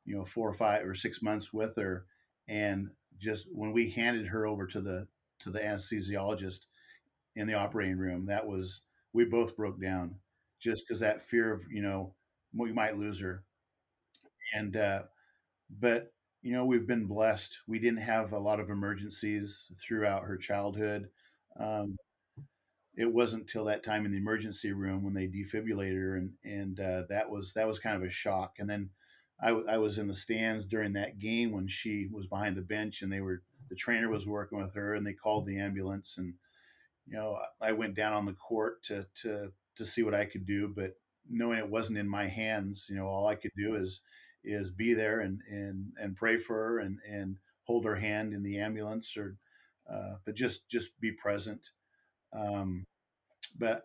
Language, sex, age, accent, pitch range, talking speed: English, male, 40-59, American, 100-110 Hz, 195 wpm